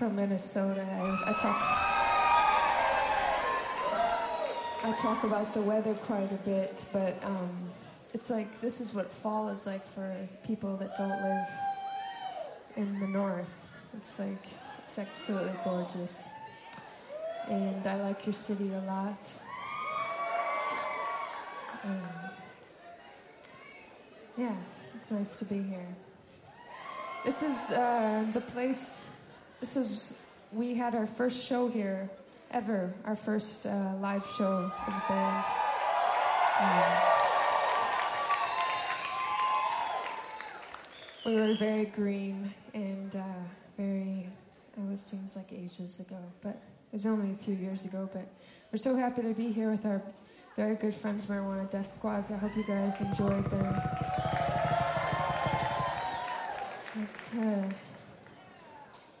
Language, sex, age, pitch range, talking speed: English, female, 20-39, 195-225 Hz, 120 wpm